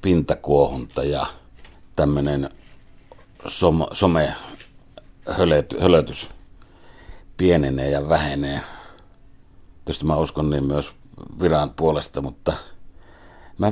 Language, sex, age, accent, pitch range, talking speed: Finnish, male, 60-79, native, 70-85 Hz, 70 wpm